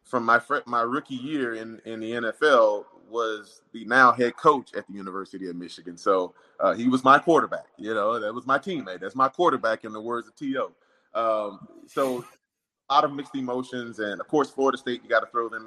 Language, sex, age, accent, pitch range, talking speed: English, male, 30-49, American, 110-145 Hz, 220 wpm